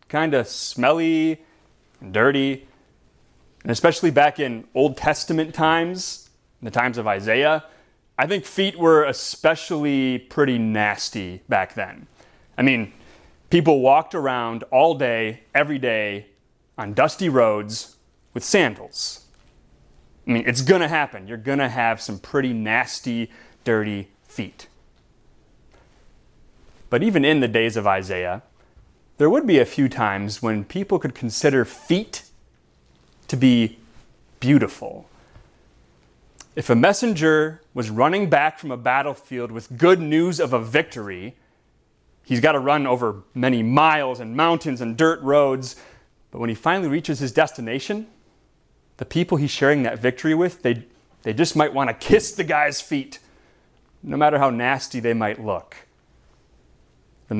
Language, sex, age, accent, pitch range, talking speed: English, male, 30-49, American, 115-155 Hz, 140 wpm